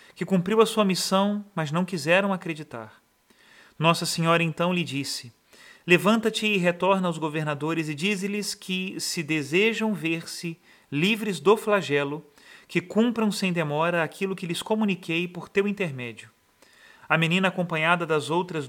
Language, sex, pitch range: Portuguese, male, 155-190 Hz